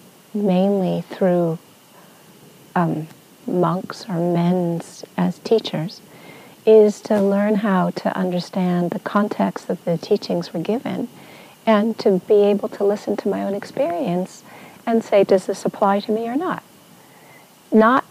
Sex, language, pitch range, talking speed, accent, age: female, English, 175-215 Hz, 135 wpm, American, 40-59